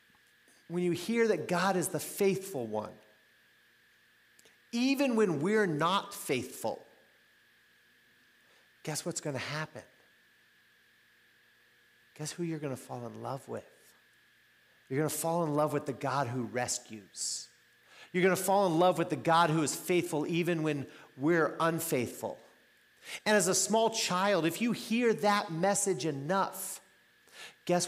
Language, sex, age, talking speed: English, male, 40-59, 135 wpm